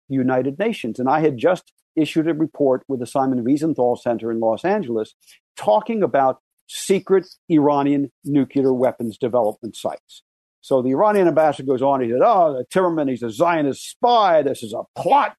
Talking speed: 170 wpm